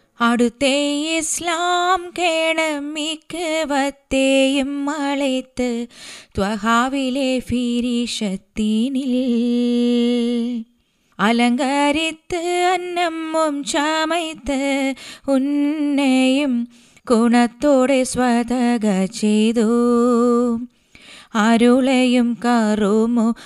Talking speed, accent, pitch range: 40 wpm, native, 235-295 Hz